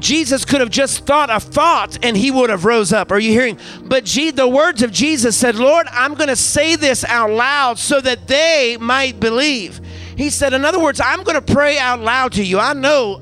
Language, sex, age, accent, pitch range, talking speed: English, male, 40-59, American, 210-265 Hz, 230 wpm